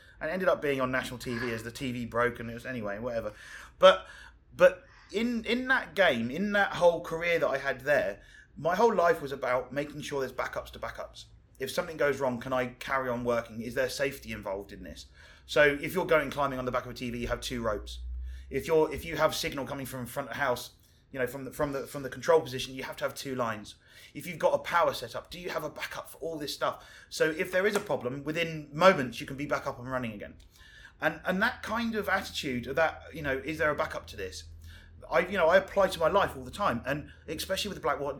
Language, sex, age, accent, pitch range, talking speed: English, male, 20-39, British, 120-160 Hz, 250 wpm